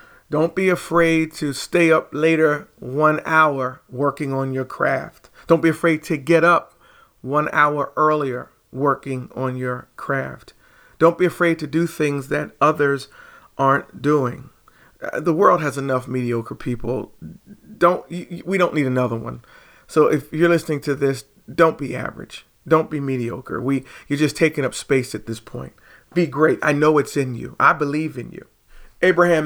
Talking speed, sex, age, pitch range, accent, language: 165 wpm, male, 40-59, 130-160 Hz, American, English